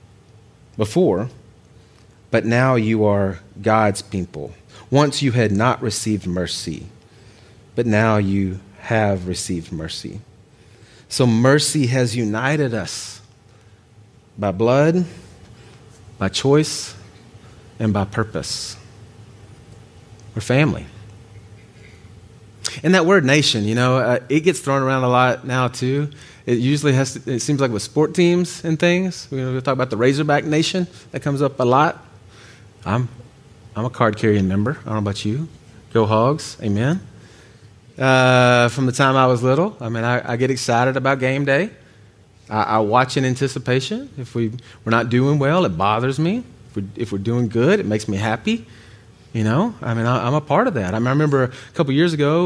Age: 30-49